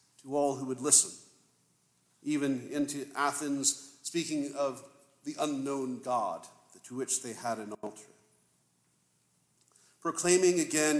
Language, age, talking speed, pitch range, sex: English, 50-69, 115 wpm, 120-160 Hz, male